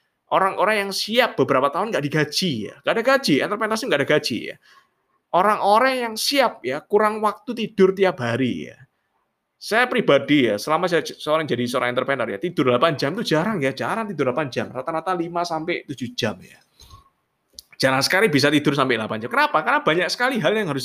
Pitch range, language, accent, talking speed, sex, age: 135-215 Hz, Indonesian, native, 195 wpm, male, 20-39